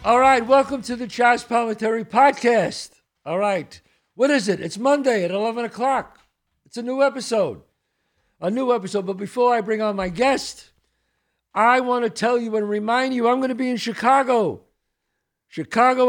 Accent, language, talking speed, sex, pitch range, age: American, English, 175 wpm, male, 175-240 Hz, 60-79